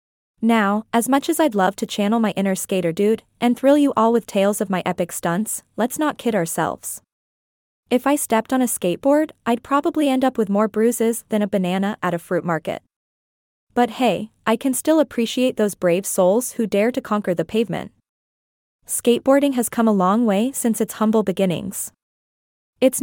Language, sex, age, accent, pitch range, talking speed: English, female, 20-39, American, 200-260 Hz, 190 wpm